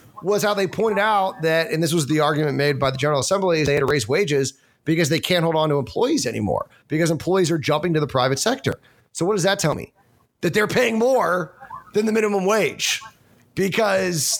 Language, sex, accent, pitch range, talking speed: English, male, American, 140-185 Hz, 220 wpm